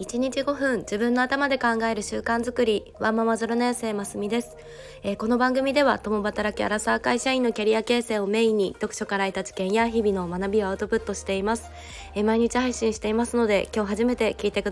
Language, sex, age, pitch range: Japanese, female, 20-39, 190-230 Hz